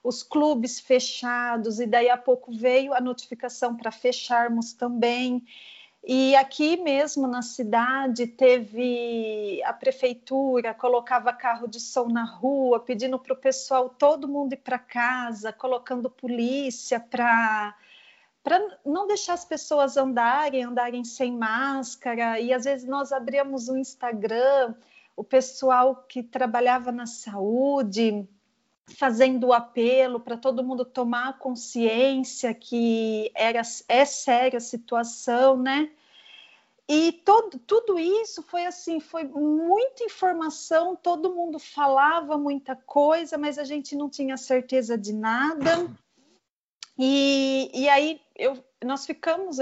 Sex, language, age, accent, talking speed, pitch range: female, Portuguese, 40-59, Brazilian, 125 wpm, 240-290 Hz